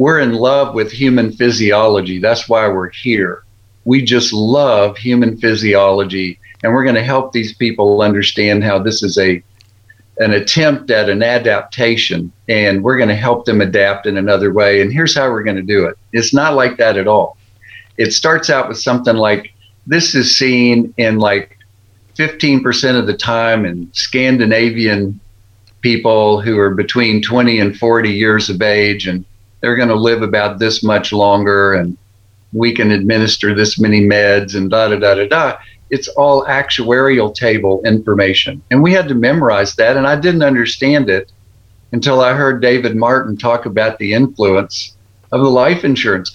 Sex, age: male, 50-69